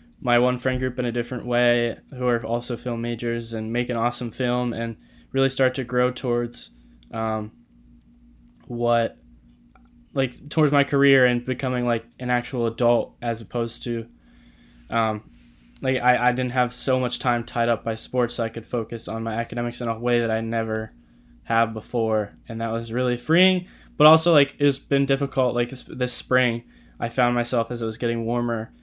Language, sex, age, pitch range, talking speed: English, male, 10-29, 115-125 Hz, 185 wpm